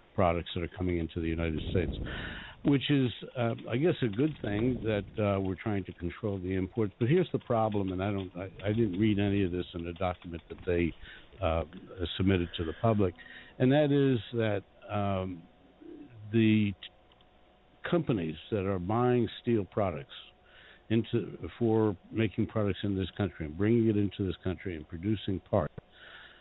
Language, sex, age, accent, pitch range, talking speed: English, male, 60-79, American, 90-110 Hz, 175 wpm